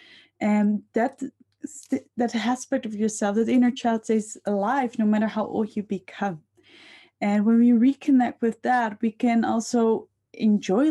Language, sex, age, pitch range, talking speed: English, female, 20-39, 210-245 Hz, 155 wpm